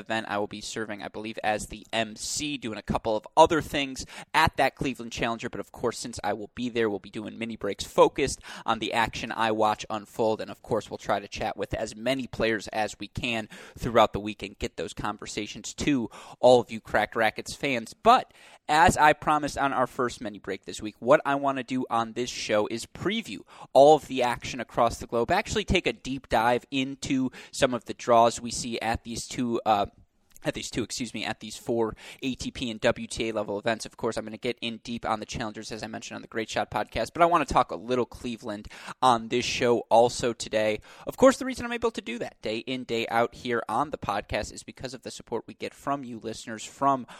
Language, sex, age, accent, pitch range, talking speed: English, male, 20-39, American, 110-130 Hz, 235 wpm